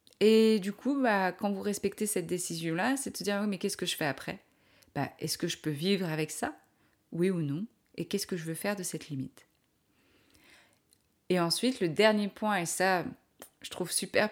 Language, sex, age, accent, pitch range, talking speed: French, female, 30-49, French, 165-215 Hz, 205 wpm